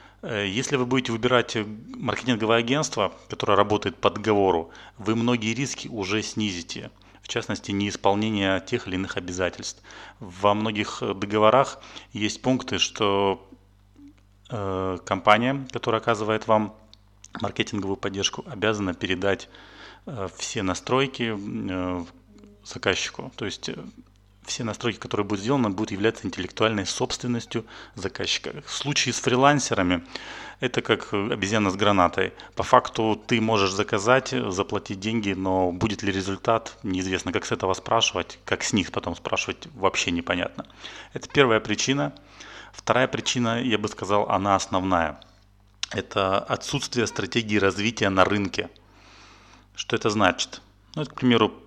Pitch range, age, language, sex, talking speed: 100-115 Hz, 30-49, Russian, male, 120 wpm